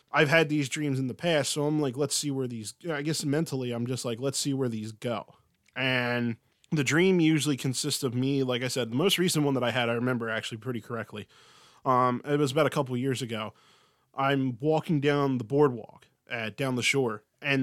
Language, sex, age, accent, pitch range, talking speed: English, male, 20-39, American, 120-145 Hz, 225 wpm